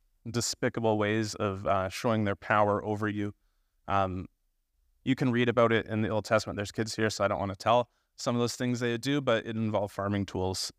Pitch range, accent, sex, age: 90-115 Hz, American, male, 30-49